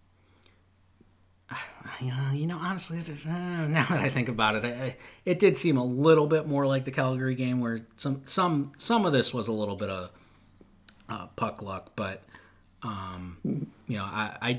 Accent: American